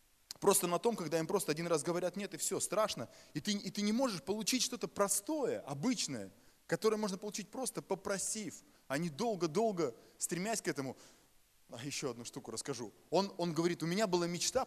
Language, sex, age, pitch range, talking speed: Russian, male, 20-39, 140-195 Hz, 190 wpm